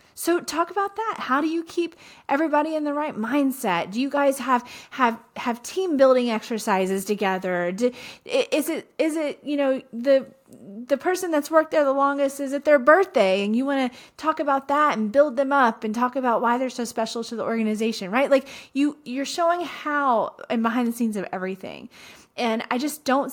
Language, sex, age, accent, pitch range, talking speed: English, female, 30-49, American, 190-280 Hz, 200 wpm